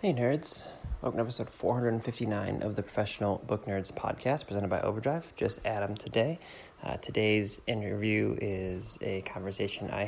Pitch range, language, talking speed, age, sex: 95-110 Hz, English, 150 wpm, 20-39, male